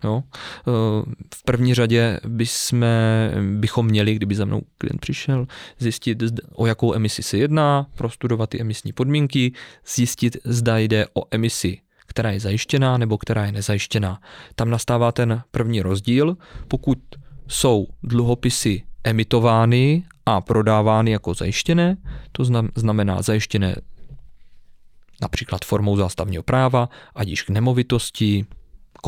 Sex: male